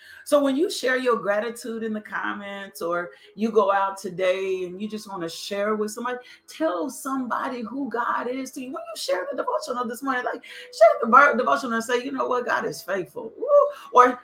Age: 40-59